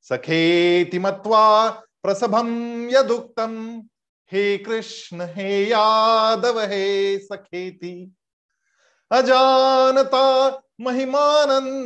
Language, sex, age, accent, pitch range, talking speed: Hindi, male, 50-69, native, 175-235 Hz, 60 wpm